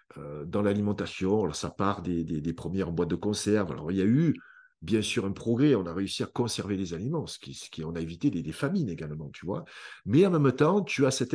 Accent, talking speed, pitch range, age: French, 255 wpm, 95-135 Hz, 50-69